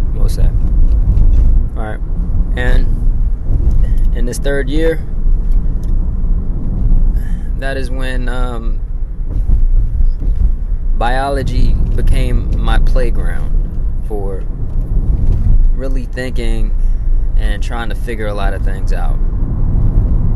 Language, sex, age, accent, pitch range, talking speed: English, male, 20-39, American, 95-125 Hz, 85 wpm